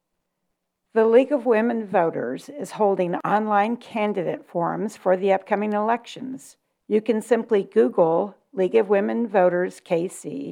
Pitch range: 180-220 Hz